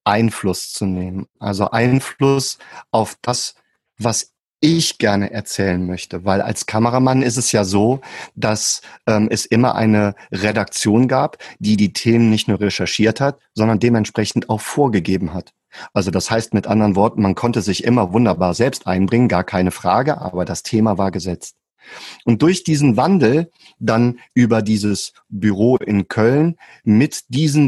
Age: 40-59